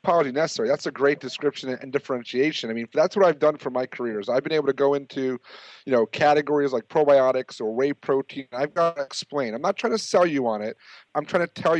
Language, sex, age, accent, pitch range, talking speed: English, male, 30-49, American, 130-145 Hz, 235 wpm